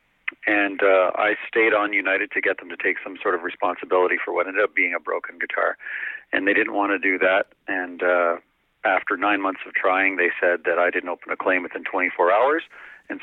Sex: male